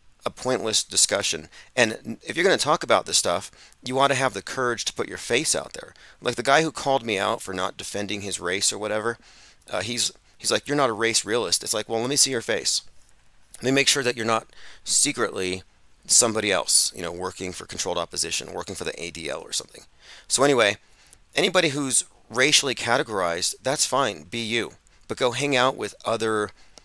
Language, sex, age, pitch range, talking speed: English, male, 30-49, 105-130 Hz, 210 wpm